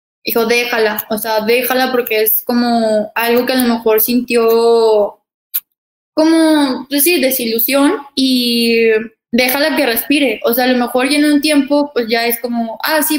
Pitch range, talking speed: 220-260 Hz, 165 wpm